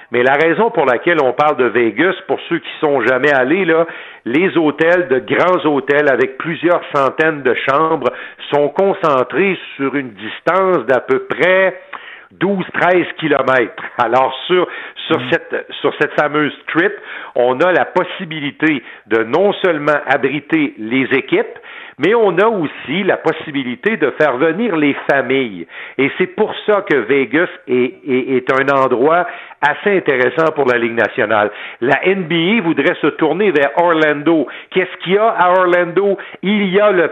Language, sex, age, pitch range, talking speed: French, male, 50-69, 135-185 Hz, 160 wpm